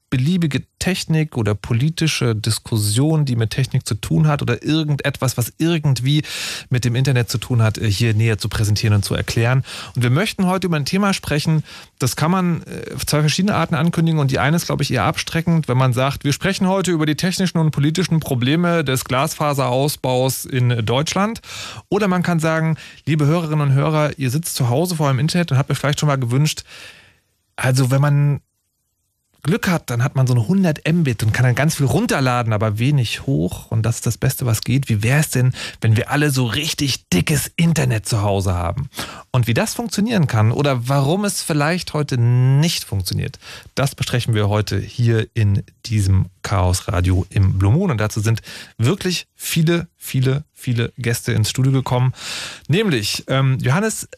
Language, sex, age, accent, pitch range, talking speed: German, male, 30-49, German, 120-155 Hz, 185 wpm